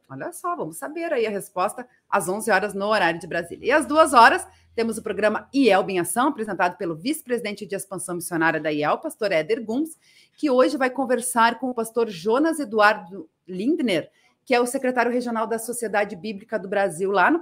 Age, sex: 30-49, female